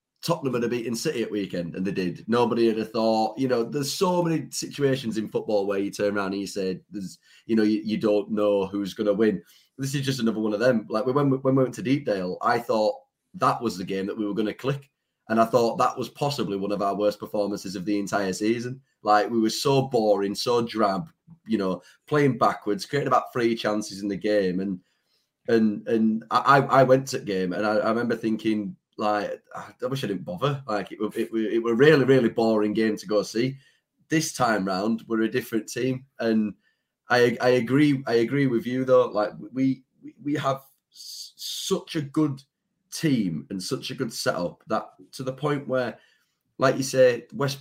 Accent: British